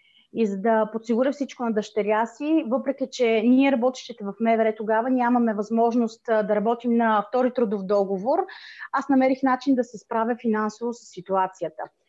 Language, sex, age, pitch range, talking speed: Bulgarian, female, 30-49, 220-270 Hz, 160 wpm